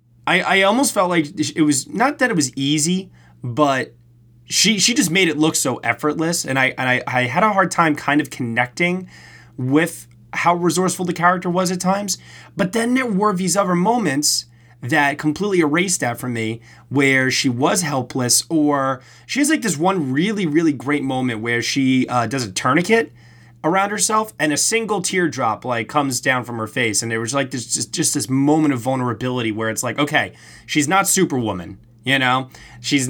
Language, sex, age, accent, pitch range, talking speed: English, male, 20-39, American, 125-175 Hz, 195 wpm